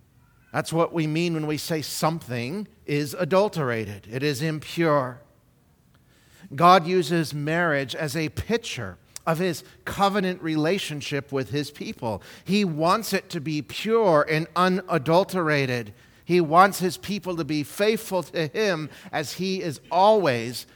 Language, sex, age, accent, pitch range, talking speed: English, male, 50-69, American, 130-180 Hz, 135 wpm